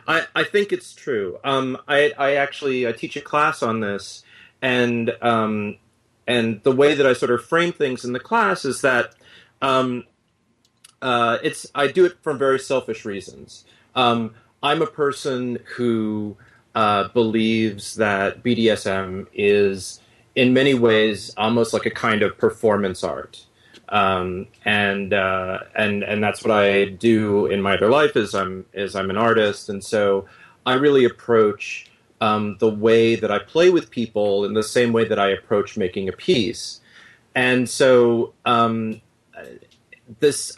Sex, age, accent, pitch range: male, 30-49, American, 105-130 Hz